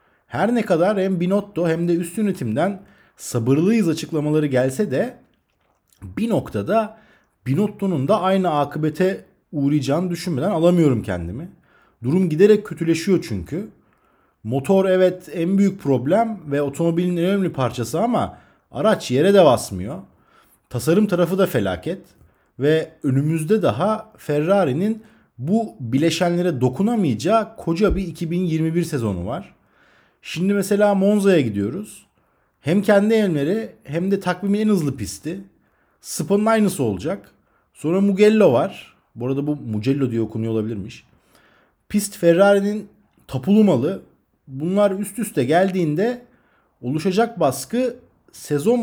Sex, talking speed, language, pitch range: male, 115 wpm, Turkish, 140-200 Hz